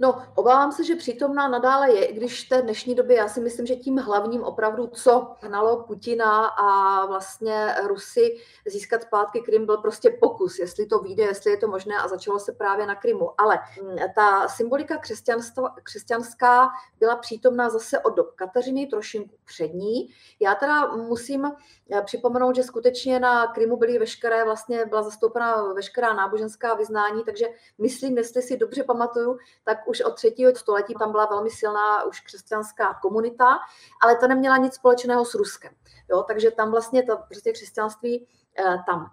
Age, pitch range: 30-49, 210-260 Hz